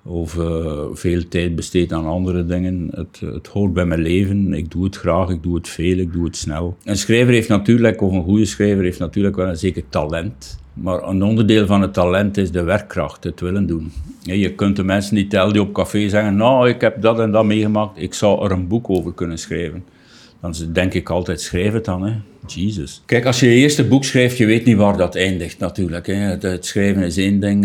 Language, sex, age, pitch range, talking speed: Dutch, male, 60-79, 90-100 Hz, 230 wpm